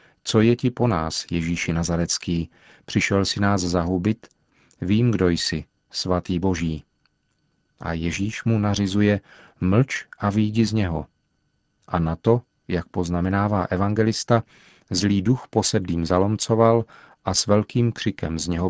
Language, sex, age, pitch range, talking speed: Czech, male, 40-59, 90-110 Hz, 130 wpm